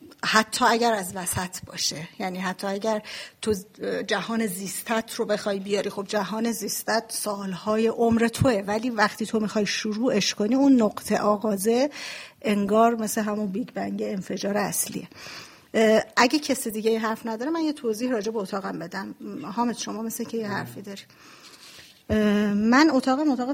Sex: female